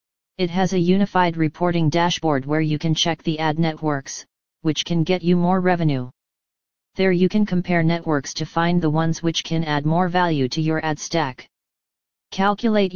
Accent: American